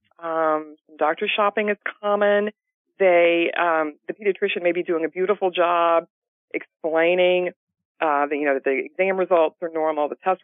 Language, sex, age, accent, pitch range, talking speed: English, female, 40-59, American, 155-200 Hz, 160 wpm